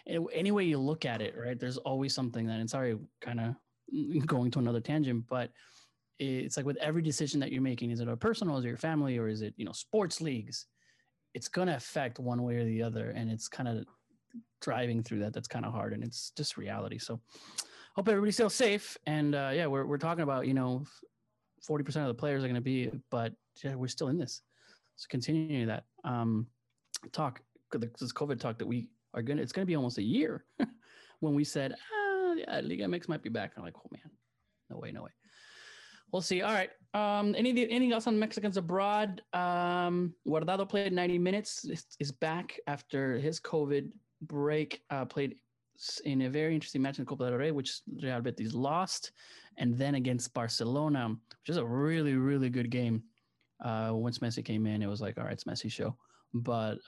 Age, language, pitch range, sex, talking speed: 20-39, English, 120-165 Hz, male, 205 wpm